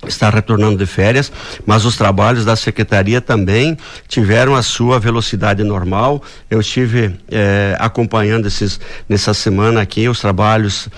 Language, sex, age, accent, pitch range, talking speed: Portuguese, male, 60-79, Brazilian, 105-125 Hz, 130 wpm